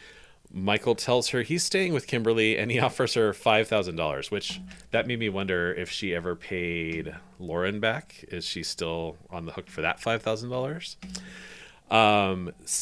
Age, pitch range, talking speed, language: 30-49, 90-115 Hz, 150 wpm, English